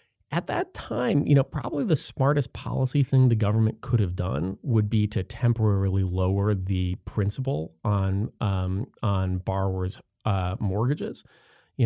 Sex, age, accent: male, 30-49, American